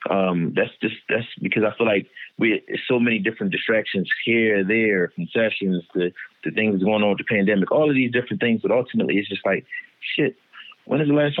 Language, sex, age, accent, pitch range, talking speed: English, male, 20-39, American, 95-115 Hz, 215 wpm